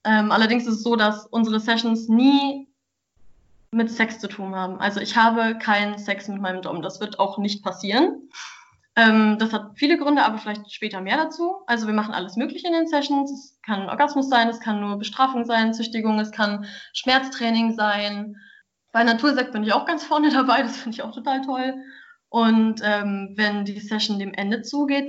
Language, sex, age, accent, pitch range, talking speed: German, female, 20-39, German, 205-240 Hz, 195 wpm